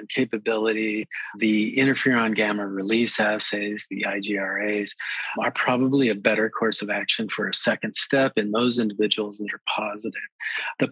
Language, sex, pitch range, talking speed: English, male, 110-125 Hz, 145 wpm